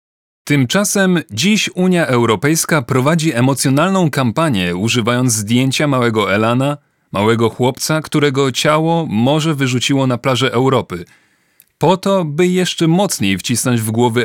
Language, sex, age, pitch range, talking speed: Polish, male, 40-59, 115-155 Hz, 120 wpm